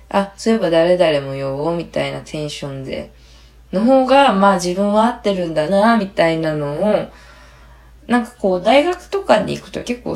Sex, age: female, 20-39